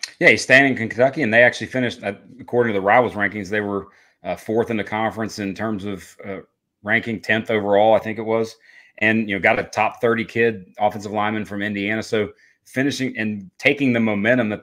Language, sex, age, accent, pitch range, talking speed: English, male, 30-49, American, 105-125 Hz, 210 wpm